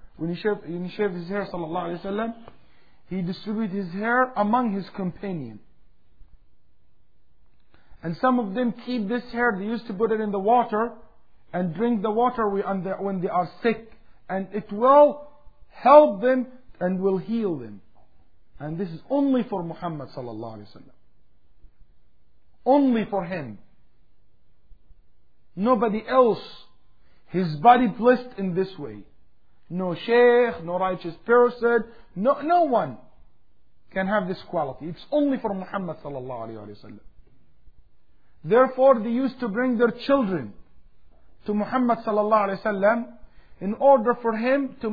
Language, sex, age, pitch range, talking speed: English, male, 50-69, 175-235 Hz, 130 wpm